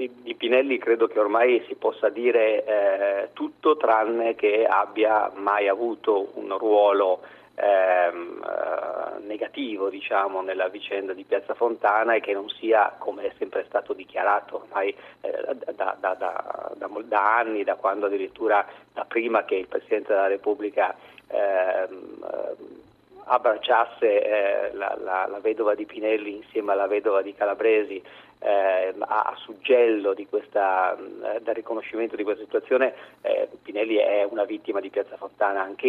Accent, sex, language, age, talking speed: native, male, Italian, 40-59, 140 wpm